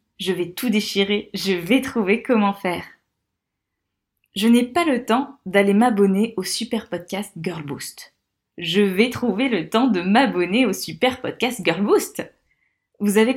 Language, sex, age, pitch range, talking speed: French, female, 20-39, 180-230 Hz, 155 wpm